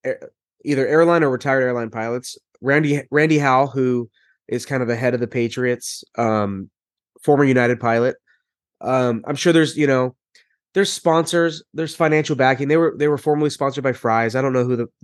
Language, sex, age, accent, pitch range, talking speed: English, male, 20-39, American, 120-150 Hz, 185 wpm